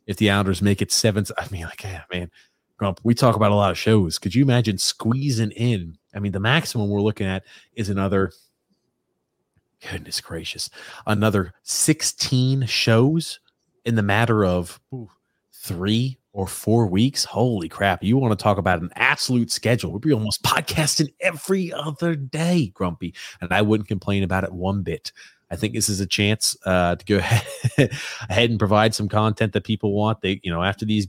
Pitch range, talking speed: 95-110 Hz, 185 wpm